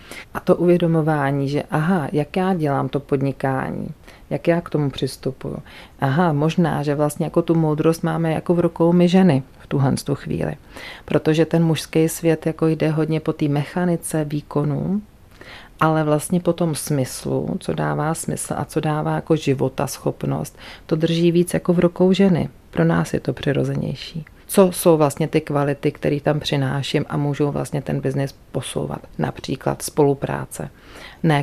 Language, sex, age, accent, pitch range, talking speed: Czech, female, 40-59, native, 140-165 Hz, 160 wpm